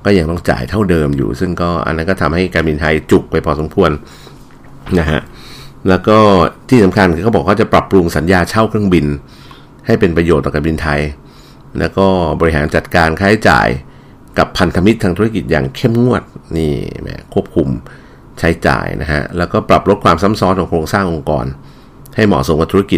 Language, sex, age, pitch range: Thai, male, 60-79, 80-100 Hz